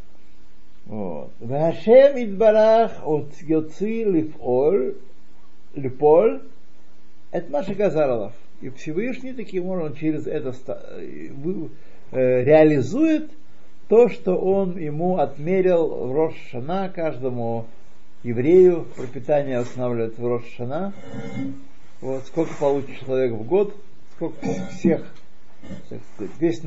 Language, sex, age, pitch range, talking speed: Russian, male, 50-69, 105-165 Hz, 90 wpm